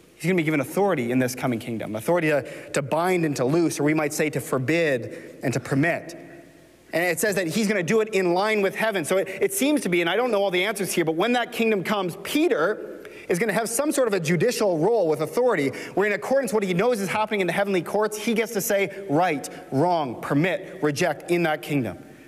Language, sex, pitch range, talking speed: English, male, 130-200 Hz, 255 wpm